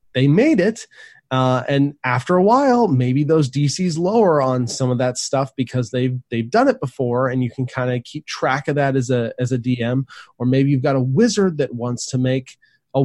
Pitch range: 120-140 Hz